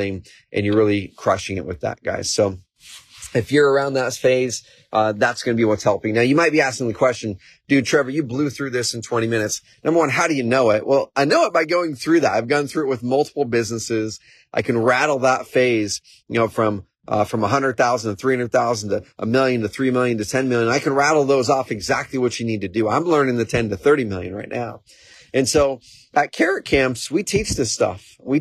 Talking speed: 240 wpm